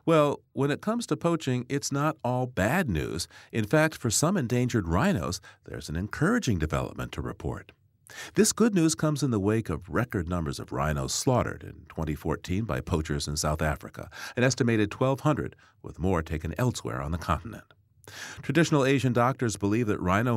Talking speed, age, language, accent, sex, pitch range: 175 wpm, 50-69, English, American, male, 80-135 Hz